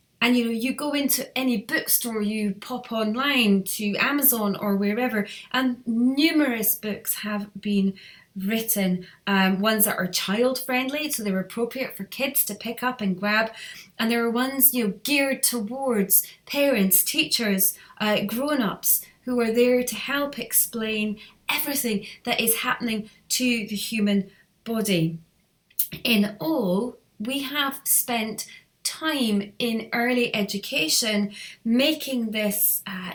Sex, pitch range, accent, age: female, 200-255 Hz, British, 30-49